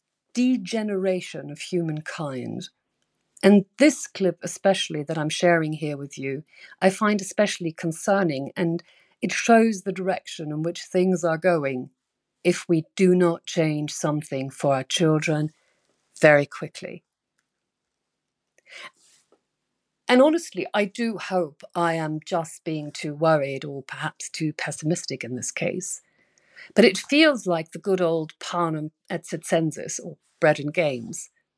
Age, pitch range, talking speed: 50-69, 155-185 Hz, 135 wpm